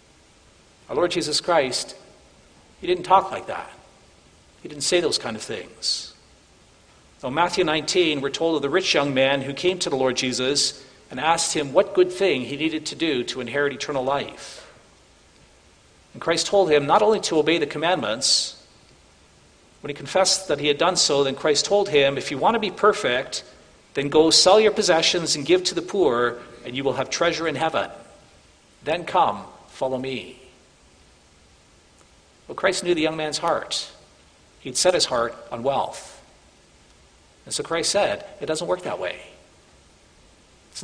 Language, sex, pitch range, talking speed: English, male, 115-170 Hz, 175 wpm